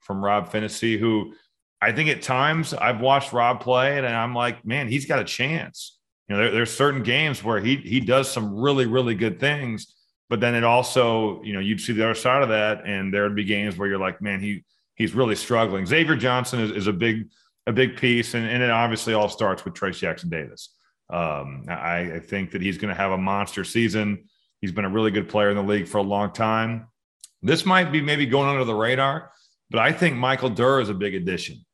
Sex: male